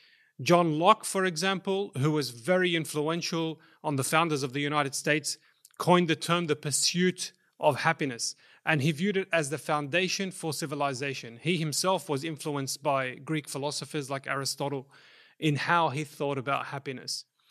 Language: English